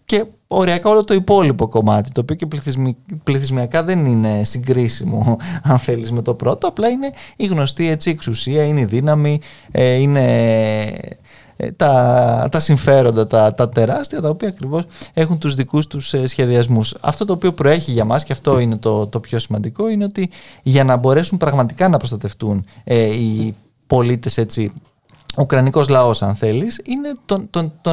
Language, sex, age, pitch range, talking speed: Greek, male, 20-39, 120-175 Hz, 165 wpm